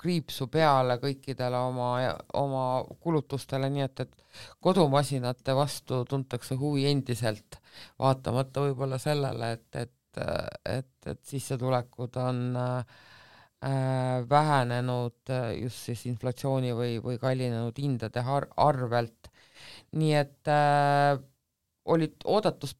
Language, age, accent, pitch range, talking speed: English, 50-69, Finnish, 125-145 Hz, 105 wpm